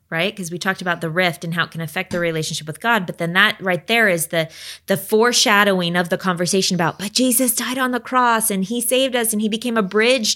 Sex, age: female, 20-39